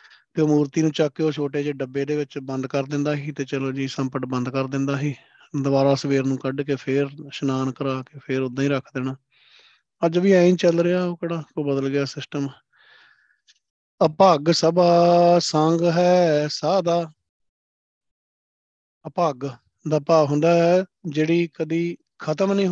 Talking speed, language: 165 wpm, Punjabi